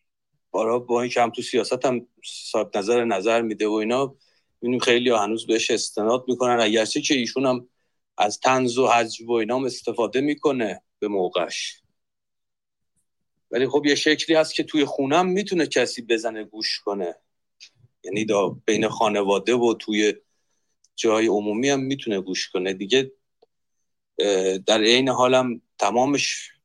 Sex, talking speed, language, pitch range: male, 140 wpm, Persian, 115-175 Hz